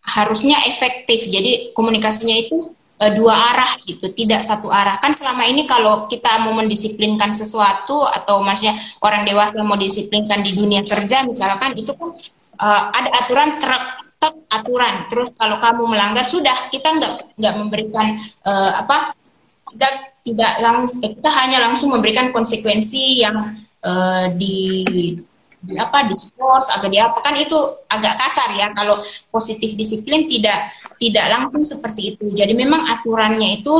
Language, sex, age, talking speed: Indonesian, female, 20-39, 145 wpm